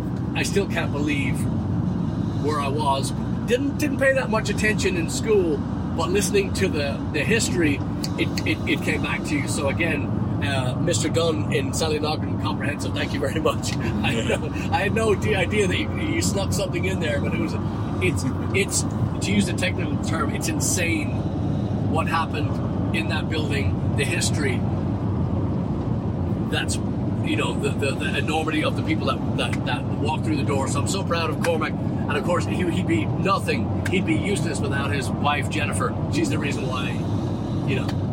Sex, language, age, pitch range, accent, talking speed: male, English, 40-59, 100-125 Hz, American, 180 wpm